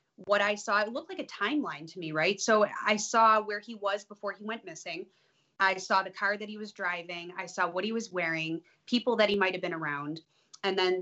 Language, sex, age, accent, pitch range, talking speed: English, female, 20-39, American, 180-220 Hz, 240 wpm